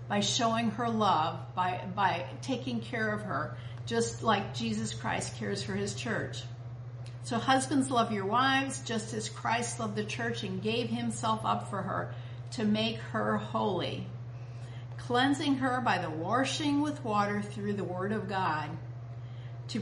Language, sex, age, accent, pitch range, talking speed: English, female, 50-69, American, 115-140 Hz, 155 wpm